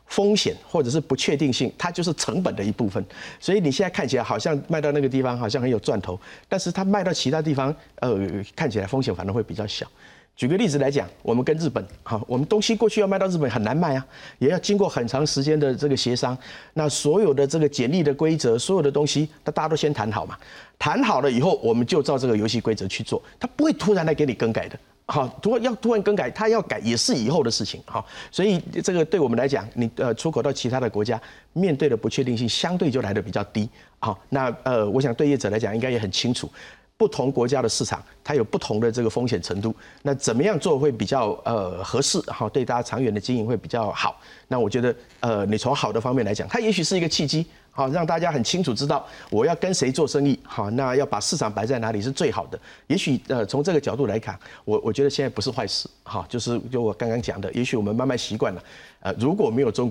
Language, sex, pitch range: Chinese, male, 115-165 Hz